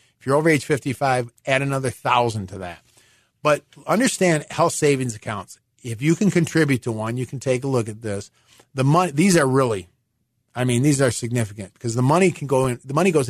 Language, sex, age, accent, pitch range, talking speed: English, male, 40-59, American, 120-160 Hz, 210 wpm